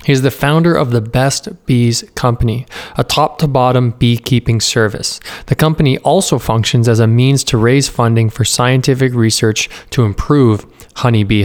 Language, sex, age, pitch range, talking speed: English, male, 20-39, 115-145 Hz, 150 wpm